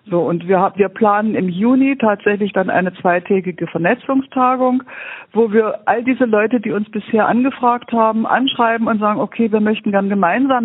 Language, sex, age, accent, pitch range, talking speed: German, female, 50-69, German, 190-245 Hz, 175 wpm